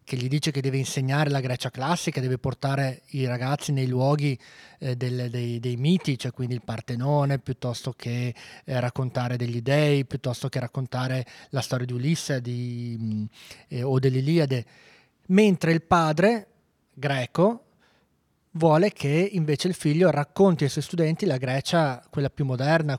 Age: 20-39